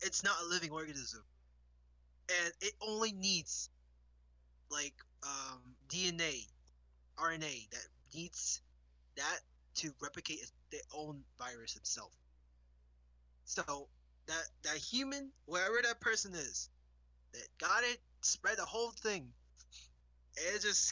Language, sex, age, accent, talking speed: English, male, 20-39, American, 110 wpm